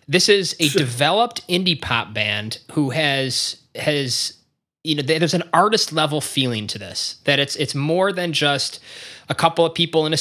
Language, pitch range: English, 130-165 Hz